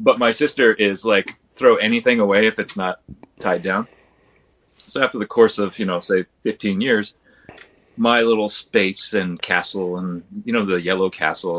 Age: 30-49